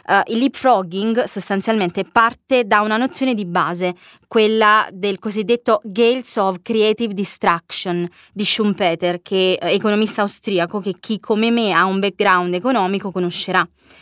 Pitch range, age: 190-240 Hz, 20-39